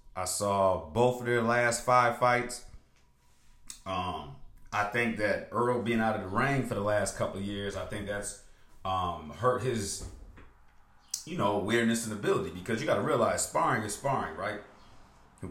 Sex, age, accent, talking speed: male, 30-49, American, 175 wpm